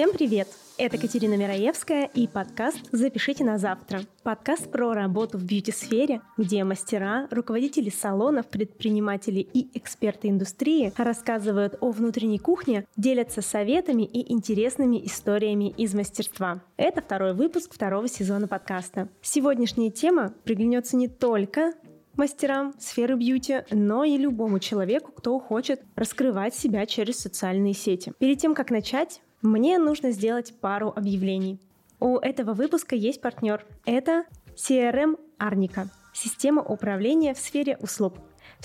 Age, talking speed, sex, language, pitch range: 20-39, 125 wpm, female, Russian, 205-265 Hz